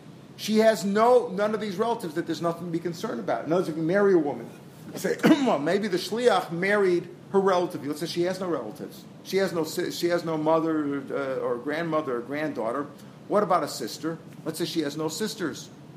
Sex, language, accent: male, English, American